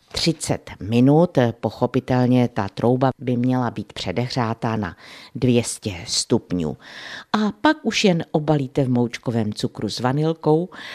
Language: Czech